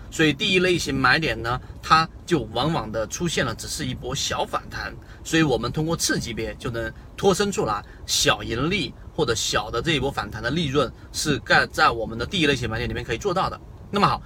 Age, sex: 30-49, male